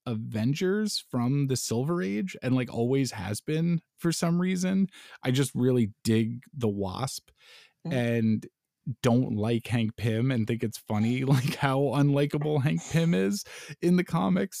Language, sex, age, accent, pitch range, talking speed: English, male, 20-39, American, 105-130 Hz, 150 wpm